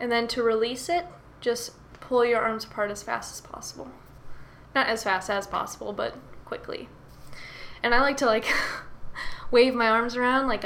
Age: 10-29